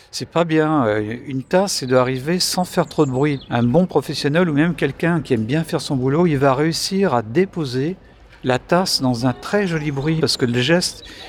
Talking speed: 215 wpm